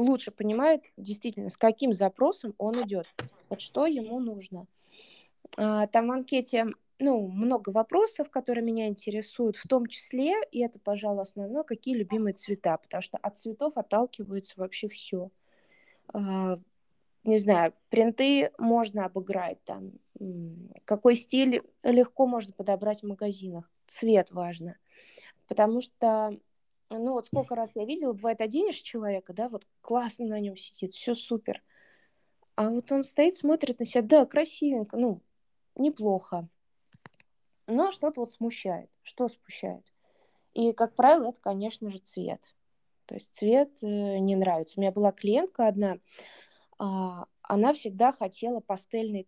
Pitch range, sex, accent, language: 200-245 Hz, female, native, Russian